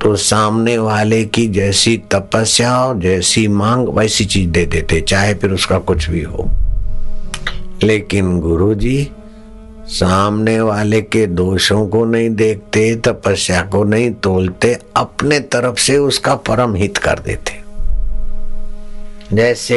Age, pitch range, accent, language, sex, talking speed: 60-79, 90-105 Hz, native, Hindi, male, 125 wpm